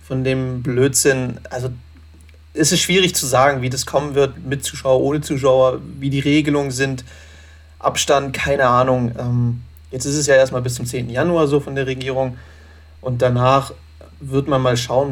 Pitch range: 120-140 Hz